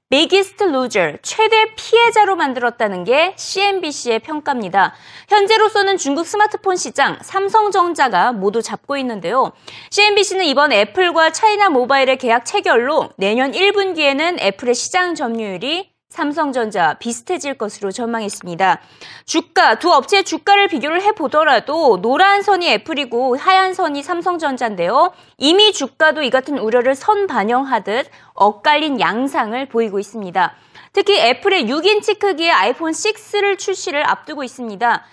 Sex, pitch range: female, 240-380 Hz